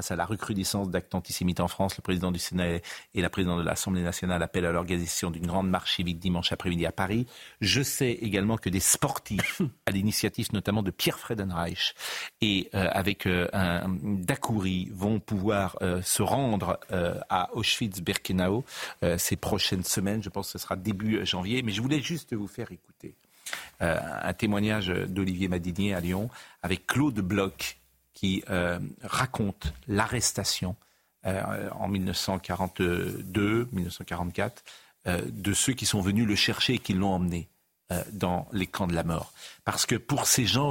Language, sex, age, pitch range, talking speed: French, male, 50-69, 90-110 Hz, 155 wpm